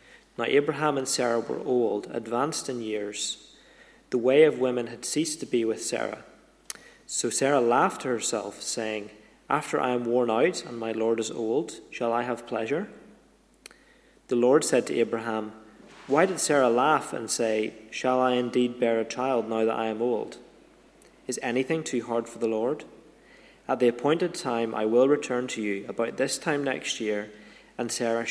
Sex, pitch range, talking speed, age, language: male, 110-125 Hz, 180 wpm, 30-49, English